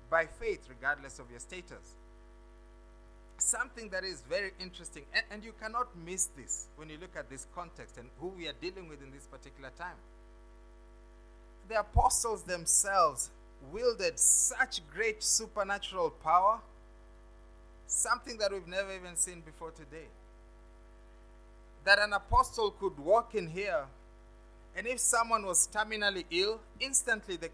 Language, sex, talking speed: English, male, 140 wpm